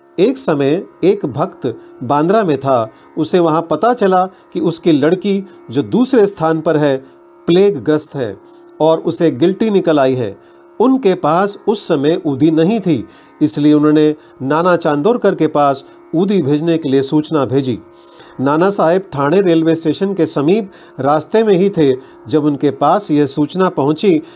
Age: 40-59